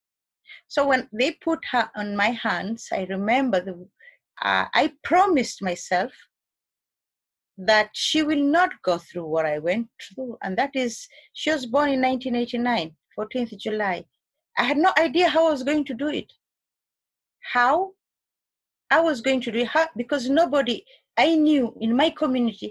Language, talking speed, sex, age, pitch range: English, 160 wpm, female, 30-49, 210-300 Hz